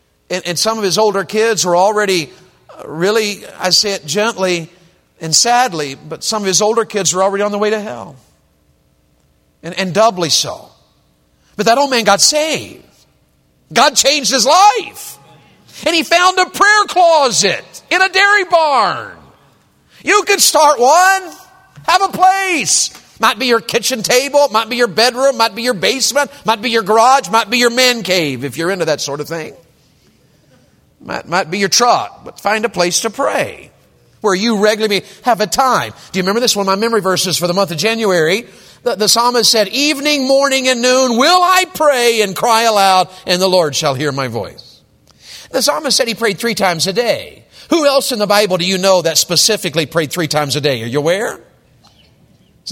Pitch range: 185-260 Hz